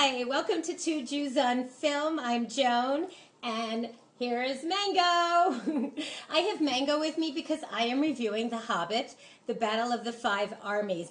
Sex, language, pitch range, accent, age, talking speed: female, English, 220-300 Hz, American, 40-59, 160 wpm